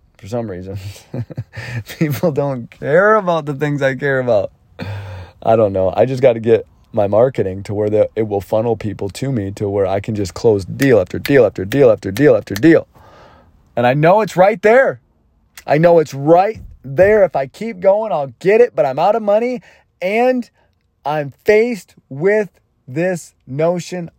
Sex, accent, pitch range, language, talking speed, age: male, American, 95-140 Hz, English, 185 wpm, 30-49